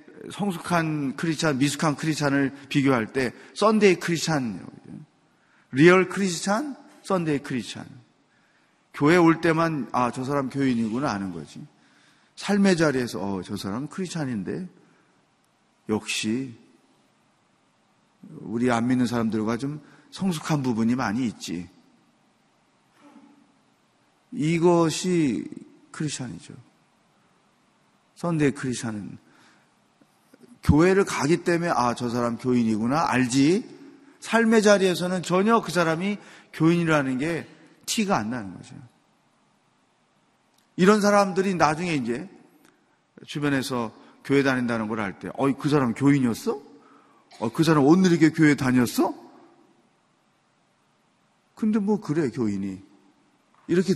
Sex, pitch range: male, 125-190 Hz